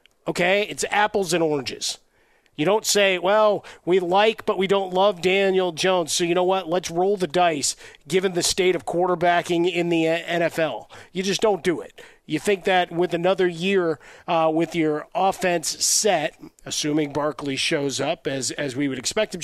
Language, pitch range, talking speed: English, 165-195 Hz, 180 wpm